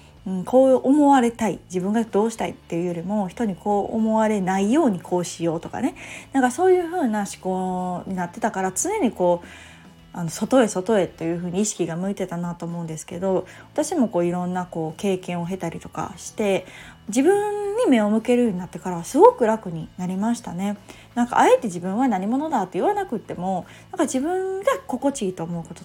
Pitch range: 180-265 Hz